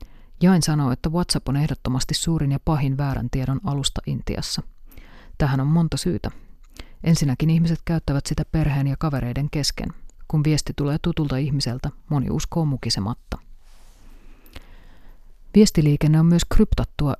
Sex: female